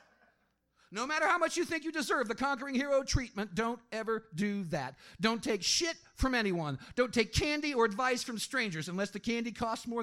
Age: 50-69